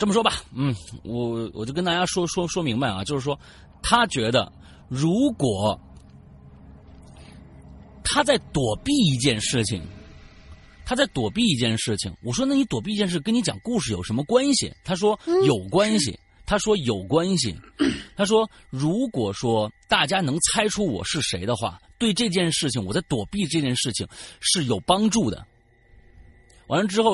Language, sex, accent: Chinese, male, native